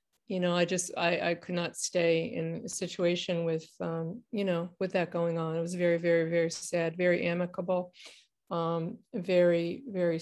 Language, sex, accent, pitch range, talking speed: English, female, American, 170-210 Hz, 180 wpm